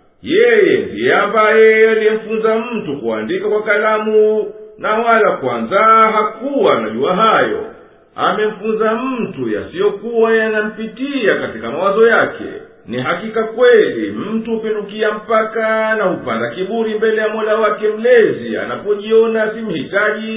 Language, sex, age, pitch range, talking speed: Swahili, male, 50-69, 215-225 Hz, 105 wpm